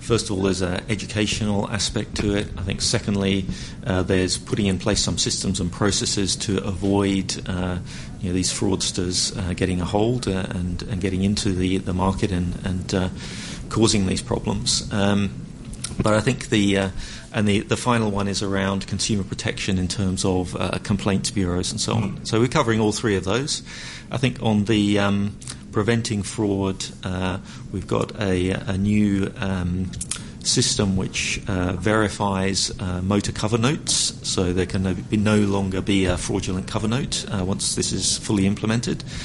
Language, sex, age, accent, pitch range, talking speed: English, male, 40-59, British, 95-110 Hz, 175 wpm